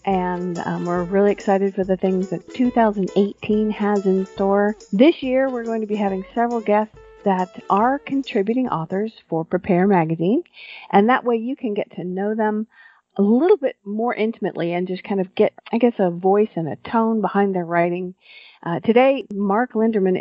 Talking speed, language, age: 185 wpm, English, 50-69